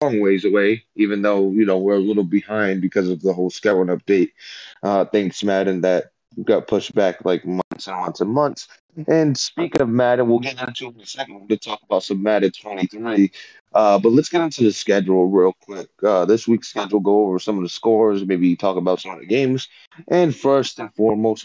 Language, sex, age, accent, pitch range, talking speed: English, male, 20-39, American, 95-115 Hz, 215 wpm